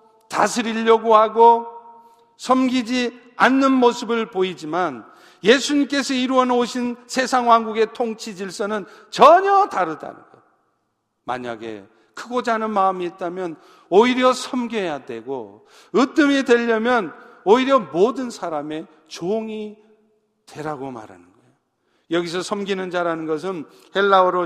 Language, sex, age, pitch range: Korean, male, 50-69, 170-240 Hz